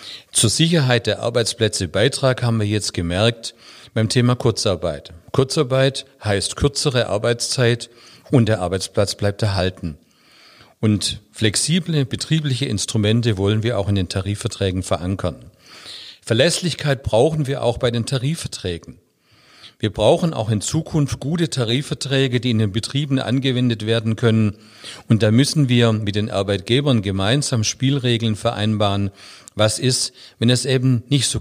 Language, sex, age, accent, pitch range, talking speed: German, male, 40-59, German, 100-130 Hz, 135 wpm